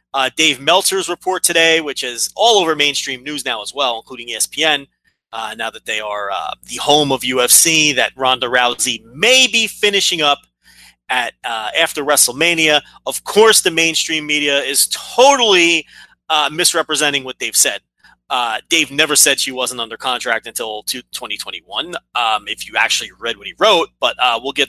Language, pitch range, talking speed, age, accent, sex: English, 135-190 Hz, 175 wpm, 30-49, American, male